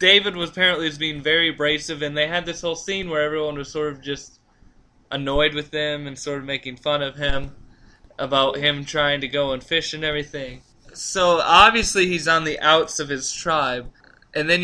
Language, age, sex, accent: English, 20-39, male, American